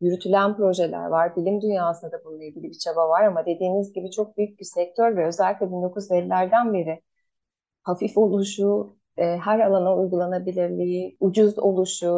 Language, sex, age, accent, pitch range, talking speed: Turkish, female, 30-49, native, 175-210 Hz, 140 wpm